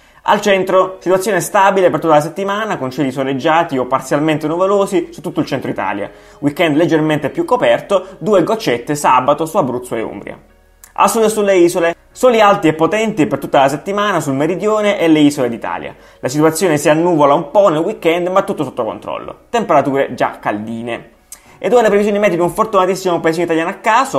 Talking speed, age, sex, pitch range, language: 185 wpm, 20-39, male, 145-195 Hz, Italian